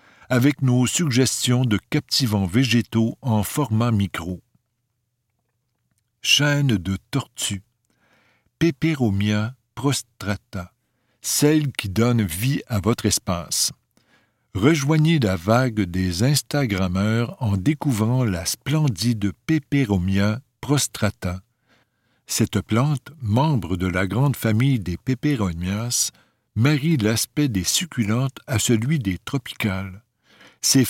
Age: 60-79